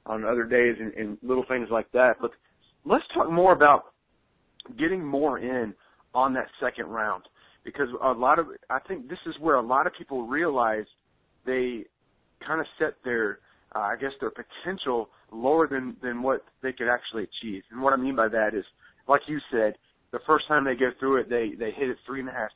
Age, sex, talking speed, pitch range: 30-49, male, 205 wpm, 120-155 Hz